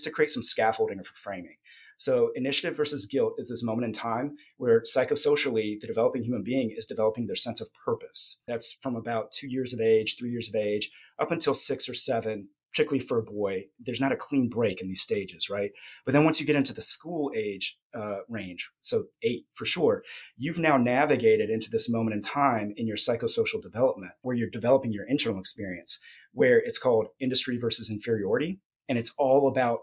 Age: 30-49